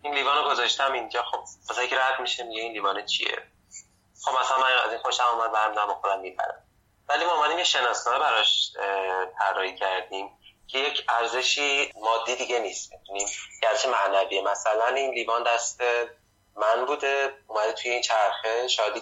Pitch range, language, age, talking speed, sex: 105-135 Hz, Persian, 30-49, 160 wpm, male